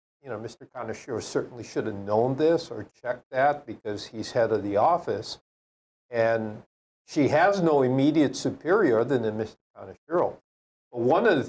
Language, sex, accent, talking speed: English, male, American, 165 wpm